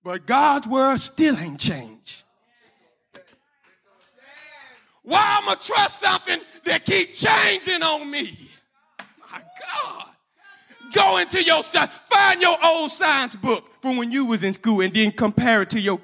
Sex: male